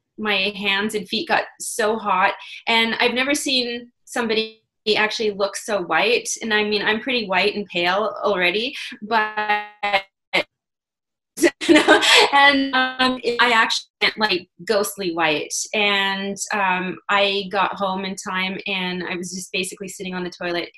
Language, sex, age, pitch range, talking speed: English, female, 20-39, 190-235 Hz, 140 wpm